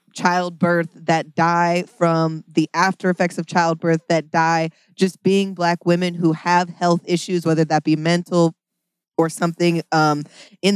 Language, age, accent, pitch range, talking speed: English, 20-39, American, 160-185 Hz, 150 wpm